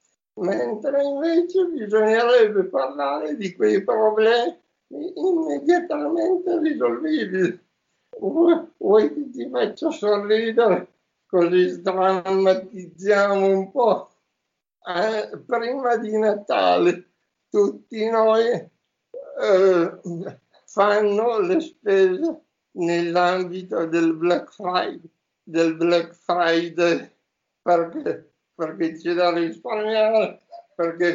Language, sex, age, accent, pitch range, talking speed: Italian, male, 60-79, native, 175-240 Hz, 80 wpm